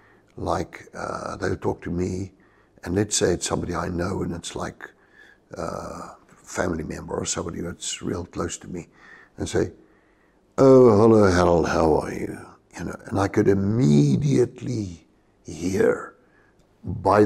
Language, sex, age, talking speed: English, male, 60-79, 150 wpm